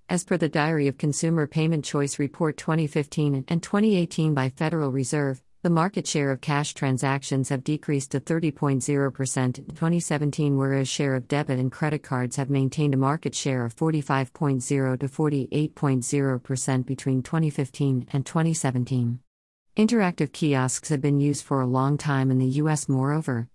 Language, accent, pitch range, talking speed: English, American, 130-155 Hz, 150 wpm